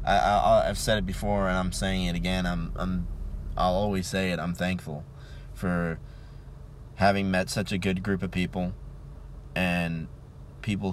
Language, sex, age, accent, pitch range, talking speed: English, male, 20-39, American, 80-95 Hz, 165 wpm